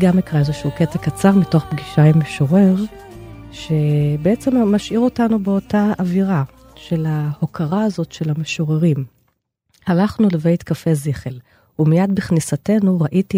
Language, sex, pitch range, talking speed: Hebrew, female, 150-180 Hz, 115 wpm